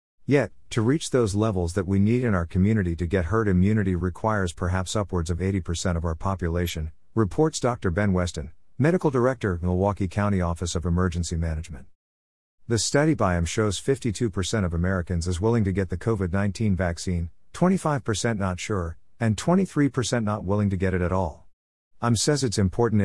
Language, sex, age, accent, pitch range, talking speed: English, male, 50-69, American, 90-115 Hz, 170 wpm